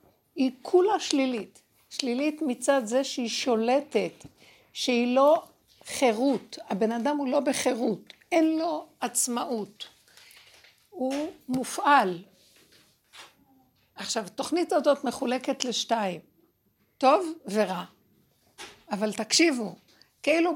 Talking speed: 90 wpm